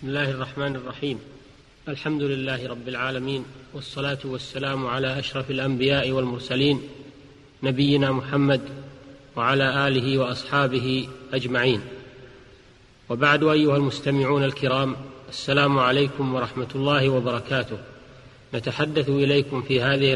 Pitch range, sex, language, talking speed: 130-145 Hz, male, Arabic, 100 wpm